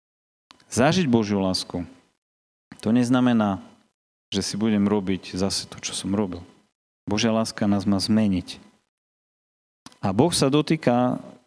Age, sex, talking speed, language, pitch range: 40-59, male, 120 wpm, Slovak, 100-125 Hz